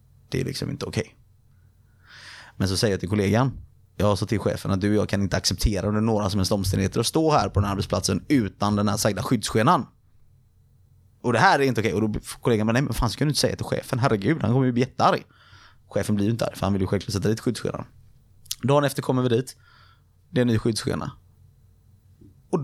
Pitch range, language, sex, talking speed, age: 105-130 Hz, Swedish, male, 235 wpm, 30-49